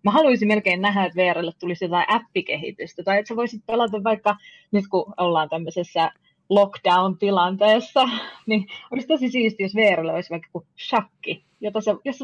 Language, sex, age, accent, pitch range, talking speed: Finnish, female, 20-39, native, 175-215 Hz, 150 wpm